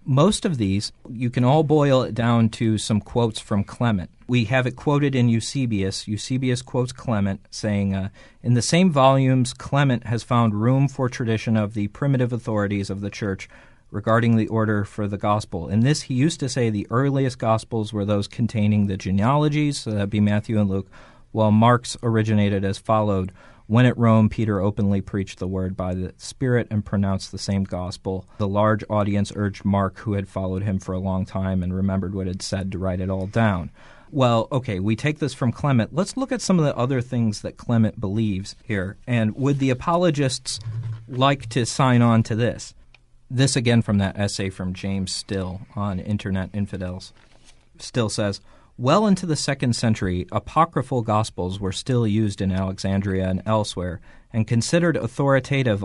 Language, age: English, 40-59